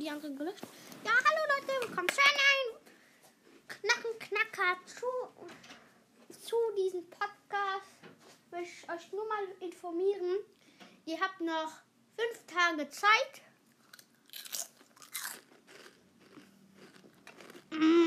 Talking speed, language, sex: 85 wpm, German, female